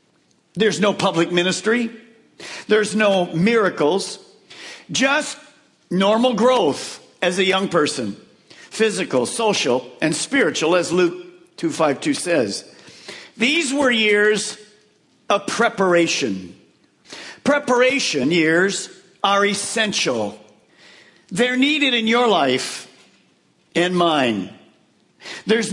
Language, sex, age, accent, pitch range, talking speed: English, male, 50-69, American, 190-250 Hz, 90 wpm